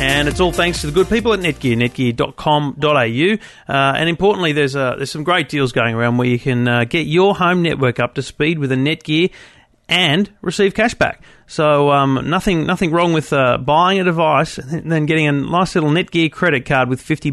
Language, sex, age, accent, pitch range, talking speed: English, male, 40-59, Australian, 130-160 Hz, 210 wpm